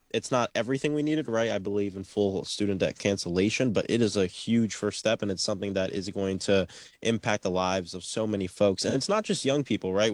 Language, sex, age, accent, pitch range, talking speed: English, male, 20-39, American, 95-110 Hz, 245 wpm